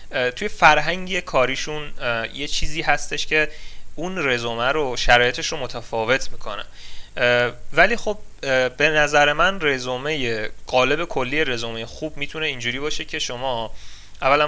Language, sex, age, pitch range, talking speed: Persian, male, 30-49, 115-145 Hz, 125 wpm